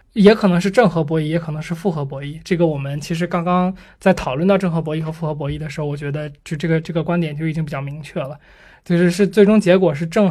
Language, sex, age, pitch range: Chinese, male, 20-39, 155-180 Hz